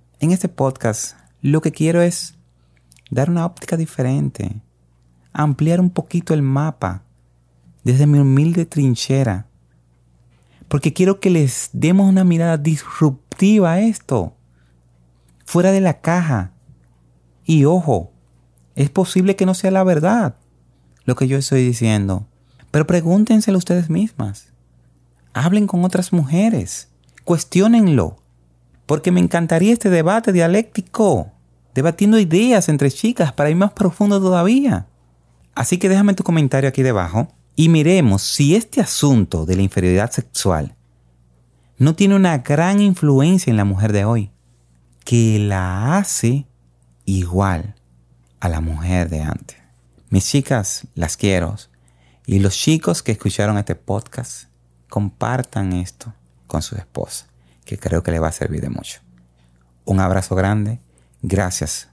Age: 30-49